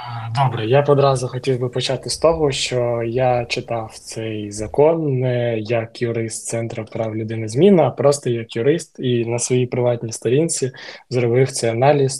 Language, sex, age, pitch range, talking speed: Ukrainian, male, 20-39, 115-135 Hz, 155 wpm